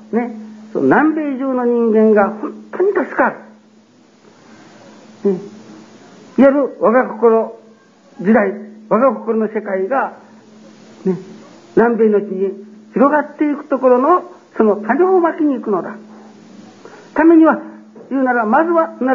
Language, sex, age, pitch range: Japanese, male, 60-79, 205-265 Hz